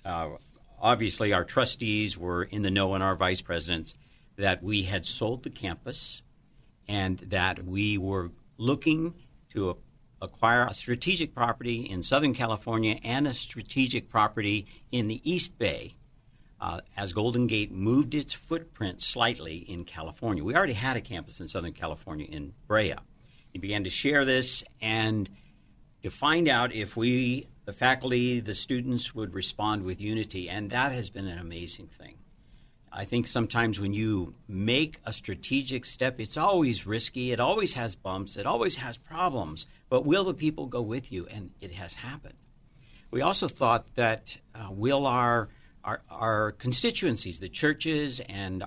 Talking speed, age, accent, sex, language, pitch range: 160 wpm, 60-79, American, male, English, 95-125 Hz